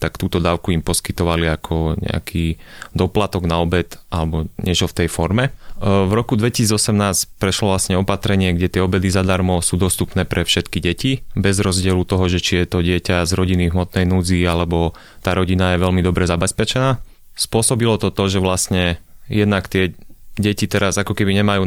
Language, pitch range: Slovak, 90-100 Hz